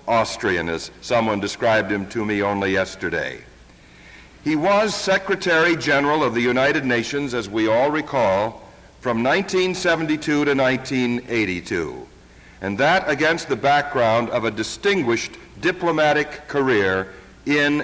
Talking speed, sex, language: 120 wpm, male, English